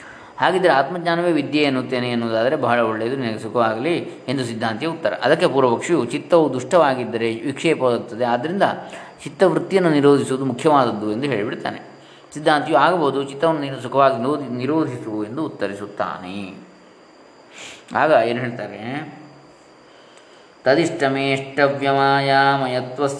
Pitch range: 120-145 Hz